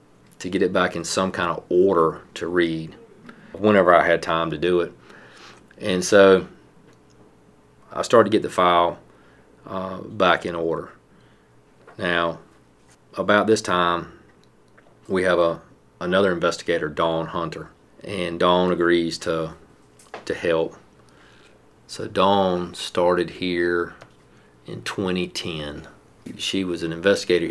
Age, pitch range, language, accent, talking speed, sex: 40-59, 80-90 Hz, English, American, 125 wpm, male